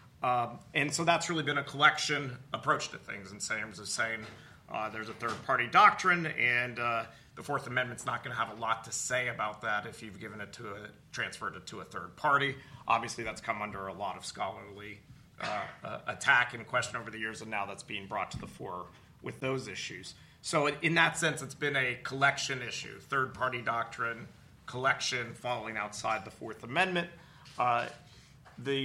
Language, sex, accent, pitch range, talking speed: English, male, American, 120-145 Hz, 200 wpm